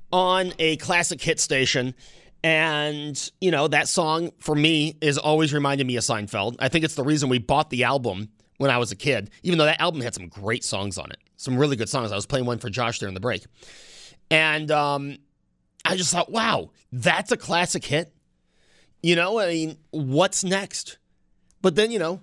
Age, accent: 30-49, American